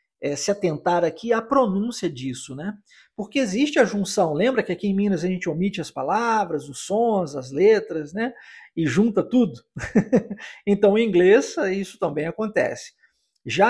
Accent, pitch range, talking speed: Brazilian, 170-235 Hz, 160 wpm